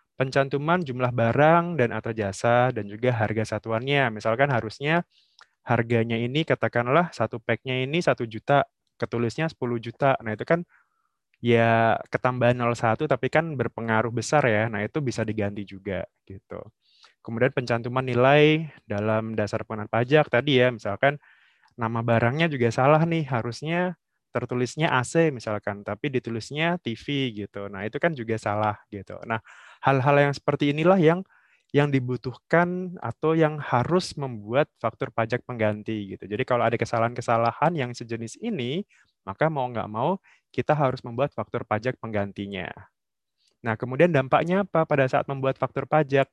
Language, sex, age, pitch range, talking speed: Indonesian, male, 20-39, 115-145 Hz, 145 wpm